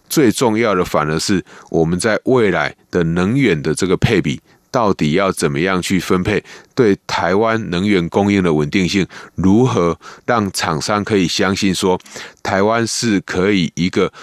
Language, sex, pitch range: Chinese, male, 90-110 Hz